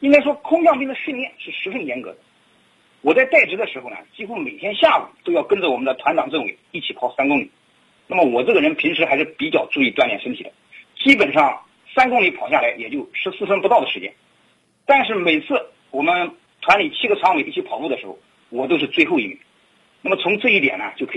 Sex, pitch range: male, 220-320 Hz